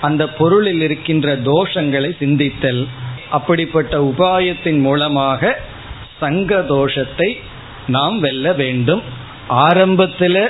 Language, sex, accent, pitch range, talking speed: Tamil, male, native, 140-180 Hz, 80 wpm